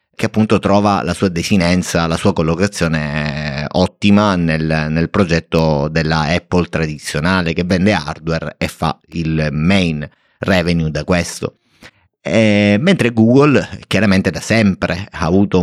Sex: male